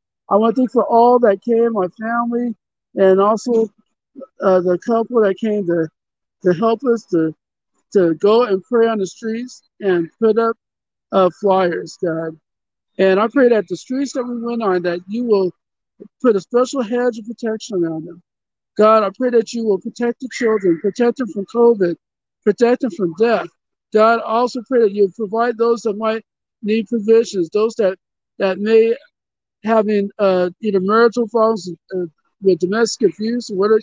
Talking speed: 175 wpm